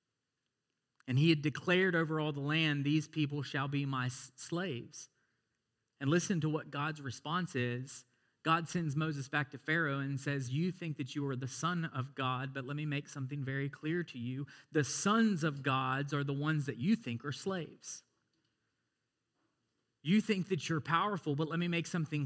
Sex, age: male, 40-59